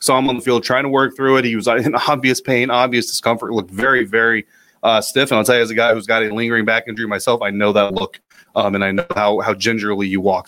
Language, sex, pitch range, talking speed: English, male, 110-130 Hz, 285 wpm